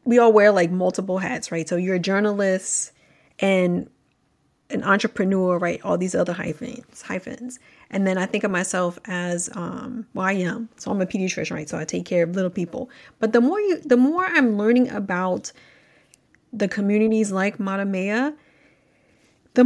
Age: 30-49